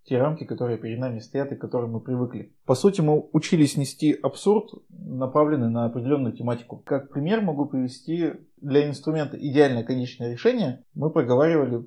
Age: 20-39